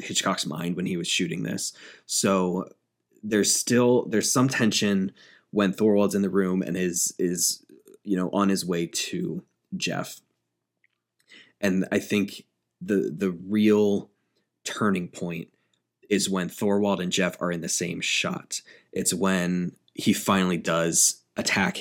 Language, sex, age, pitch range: English, male, 20-39, 90-100 Hz